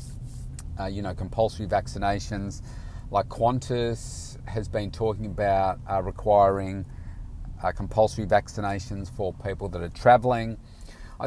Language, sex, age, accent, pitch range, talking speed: English, male, 40-59, Australian, 95-115 Hz, 115 wpm